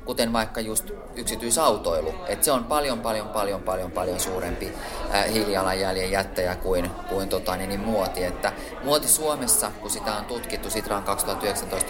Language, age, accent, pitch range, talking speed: Finnish, 30-49, native, 95-145 Hz, 155 wpm